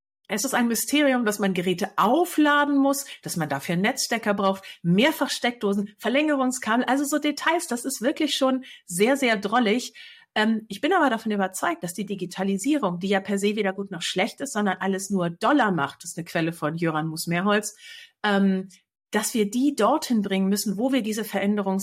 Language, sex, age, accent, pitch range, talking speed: German, female, 50-69, German, 195-260 Hz, 185 wpm